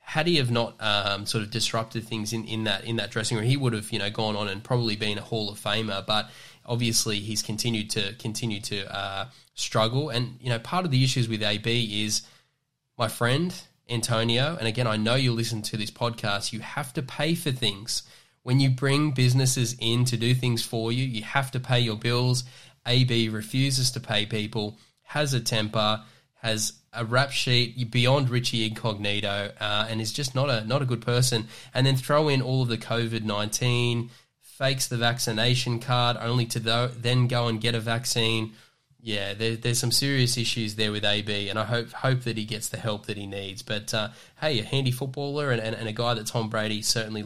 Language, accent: English, Australian